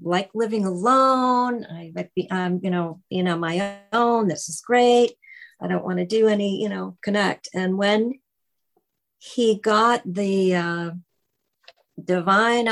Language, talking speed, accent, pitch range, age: English, 150 wpm, American, 175-215 Hz, 50-69